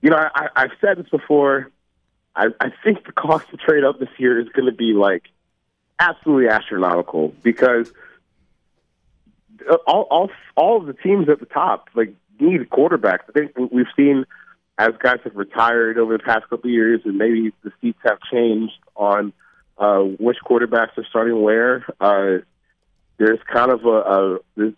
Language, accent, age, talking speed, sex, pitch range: English, American, 30-49, 170 wpm, male, 110-145 Hz